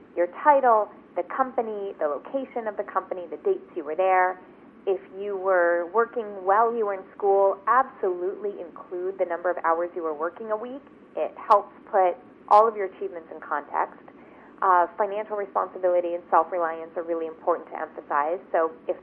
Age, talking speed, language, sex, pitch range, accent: 30-49, 175 wpm, English, female, 190-270 Hz, American